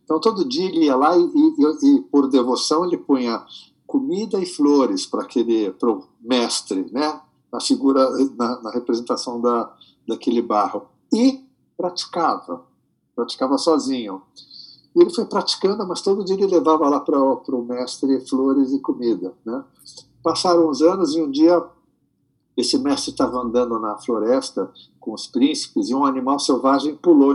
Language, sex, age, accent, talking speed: English, male, 60-79, Brazilian, 155 wpm